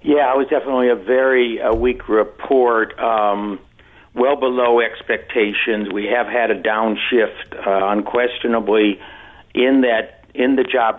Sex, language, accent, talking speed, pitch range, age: male, English, American, 130 wpm, 105-125 Hz, 60-79